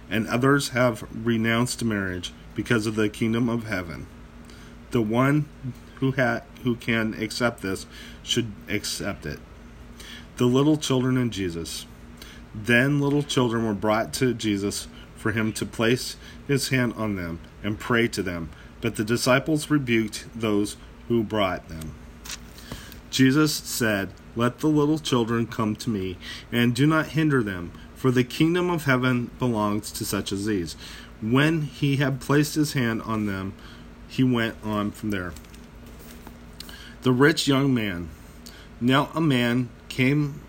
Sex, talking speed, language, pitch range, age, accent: male, 145 wpm, English, 95-130 Hz, 40-59, American